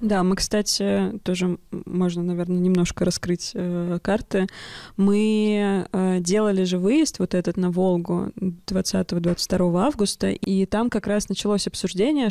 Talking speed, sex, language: 130 wpm, female, Russian